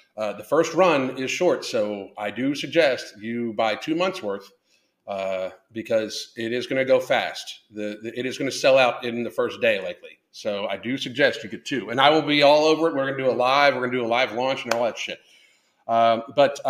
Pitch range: 110-140 Hz